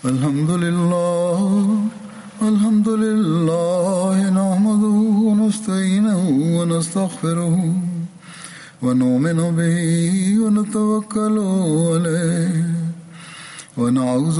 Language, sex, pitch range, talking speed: Bulgarian, male, 170-210 Hz, 45 wpm